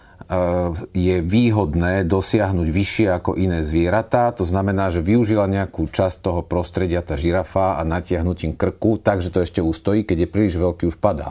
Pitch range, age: 90-105 Hz, 40-59